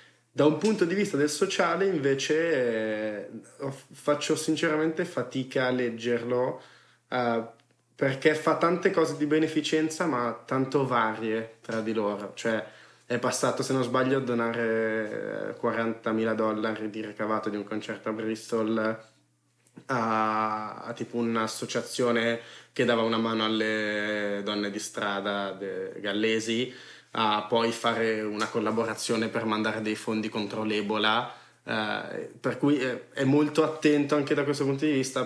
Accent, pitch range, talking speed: native, 110-125 Hz, 135 wpm